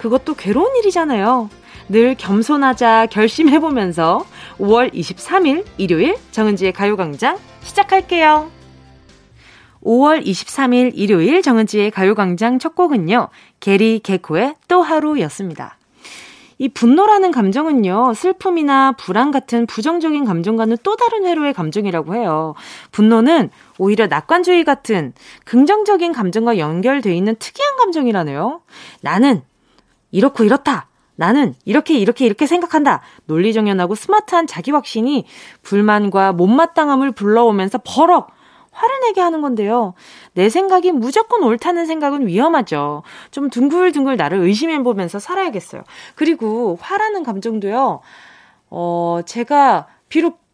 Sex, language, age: female, Korean, 20-39